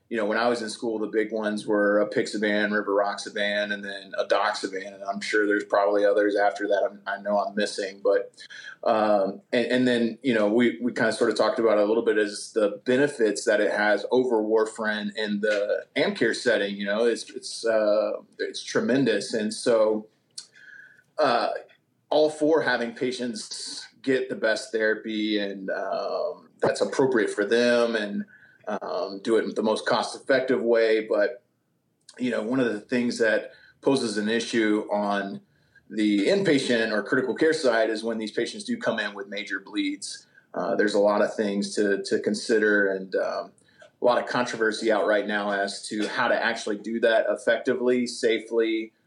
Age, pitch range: 30-49, 105-125 Hz